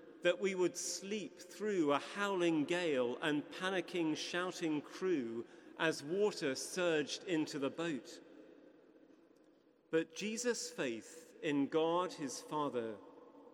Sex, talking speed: male, 110 wpm